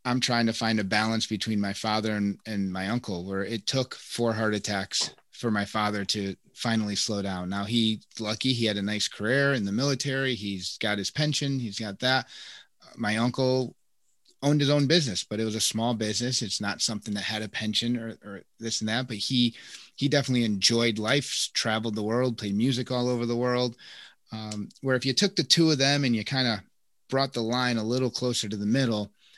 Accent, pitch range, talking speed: American, 105-130 Hz, 215 wpm